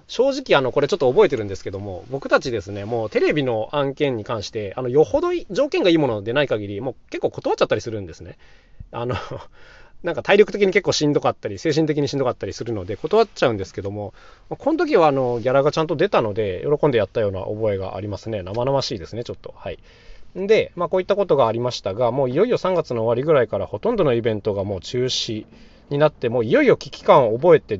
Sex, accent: male, native